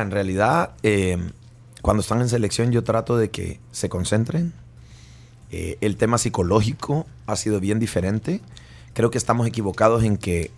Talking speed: 155 wpm